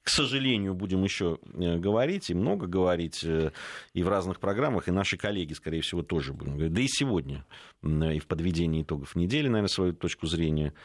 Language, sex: Russian, male